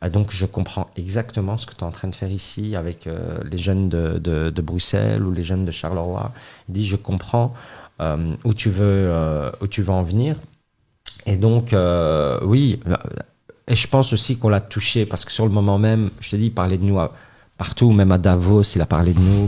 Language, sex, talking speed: French, male, 225 wpm